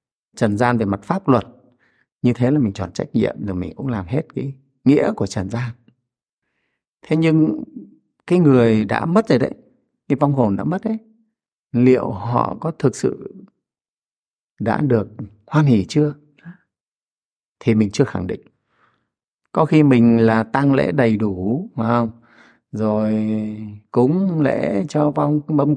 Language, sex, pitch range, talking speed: Vietnamese, male, 110-150 Hz, 155 wpm